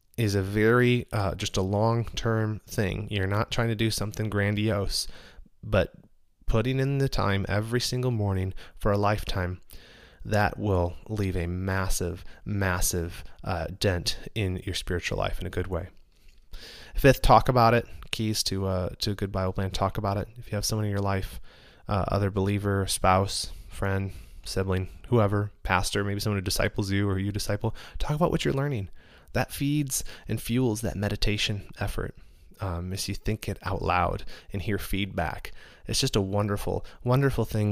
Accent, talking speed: American, 175 wpm